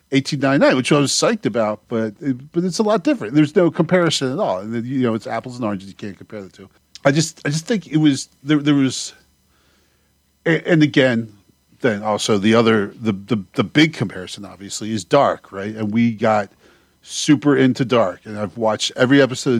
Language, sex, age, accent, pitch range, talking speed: English, male, 40-59, American, 105-140 Hz, 205 wpm